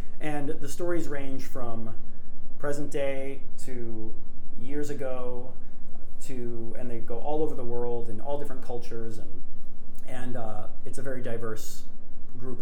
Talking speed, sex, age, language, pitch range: 145 wpm, male, 30-49, English, 115-145 Hz